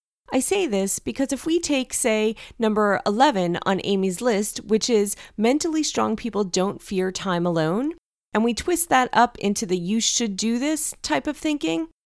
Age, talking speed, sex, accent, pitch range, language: 30-49, 180 wpm, female, American, 180-260 Hz, English